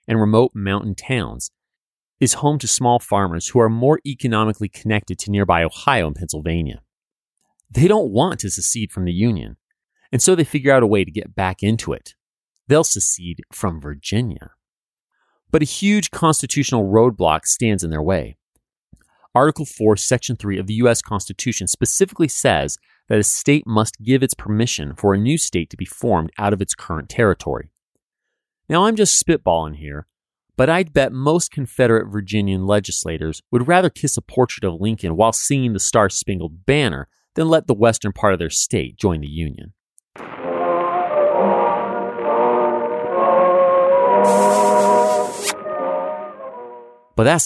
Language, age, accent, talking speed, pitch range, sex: English, 30-49, American, 150 wpm, 95-135 Hz, male